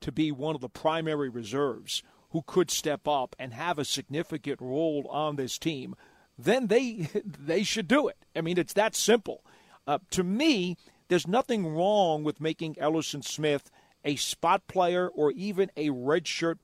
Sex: male